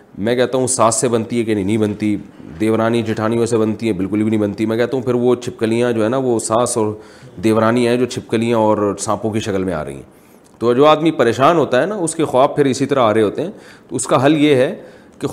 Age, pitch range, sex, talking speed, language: 30-49, 110-155 Hz, male, 250 wpm, Urdu